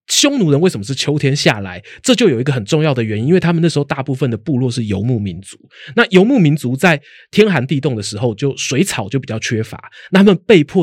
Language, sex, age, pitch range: Chinese, male, 20-39, 120-180 Hz